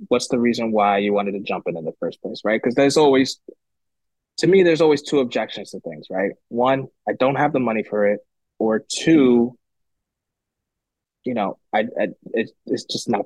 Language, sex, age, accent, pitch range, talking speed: English, male, 20-39, American, 110-135 Hz, 200 wpm